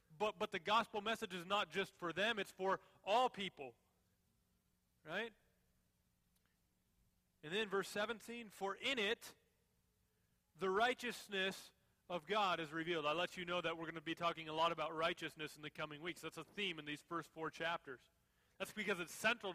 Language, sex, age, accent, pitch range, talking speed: English, male, 30-49, American, 165-225 Hz, 180 wpm